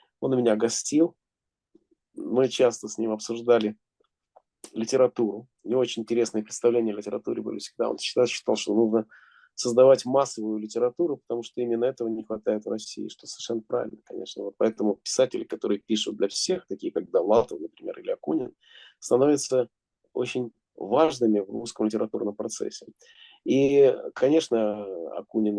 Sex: male